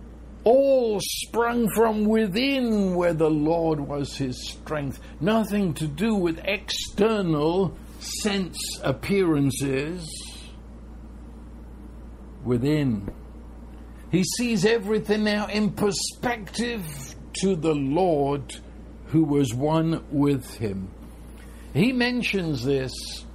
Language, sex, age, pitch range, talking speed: English, male, 60-79, 120-180 Hz, 90 wpm